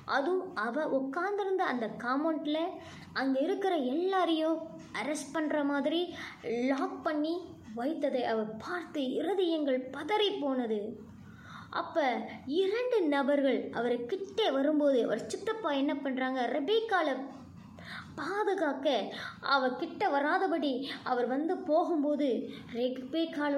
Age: 20-39